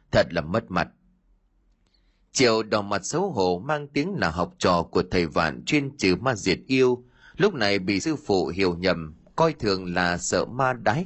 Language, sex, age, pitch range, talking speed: Vietnamese, male, 30-49, 90-145 Hz, 190 wpm